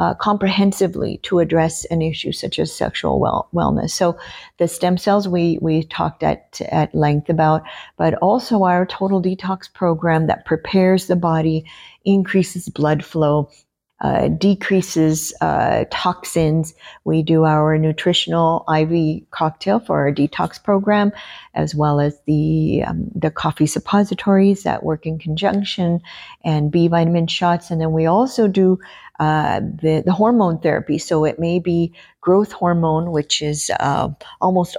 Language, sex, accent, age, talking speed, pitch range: English, female, American, 50-69, 145 wpm, 155-185 Hz